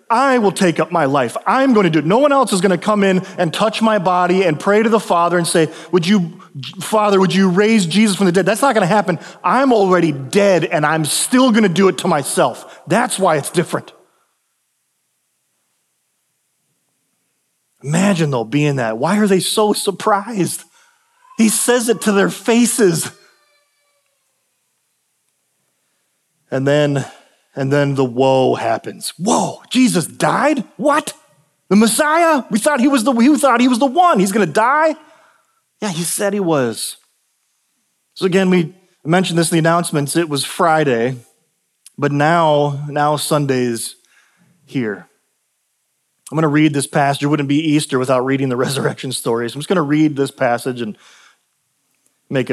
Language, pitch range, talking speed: English, 145-215 Hz, 165 wpm